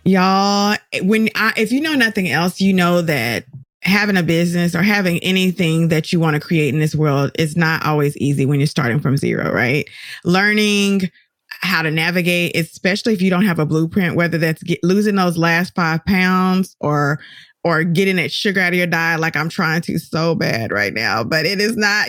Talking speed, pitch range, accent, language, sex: 200 wpm, 165-200 Hz, American, English, female